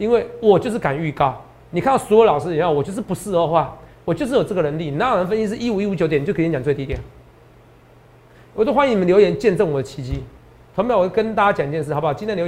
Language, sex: Chinese, male